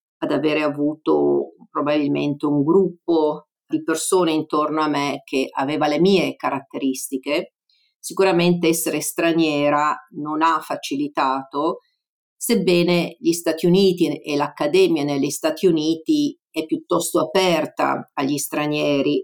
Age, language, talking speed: 50-69, Italian, 110 wpm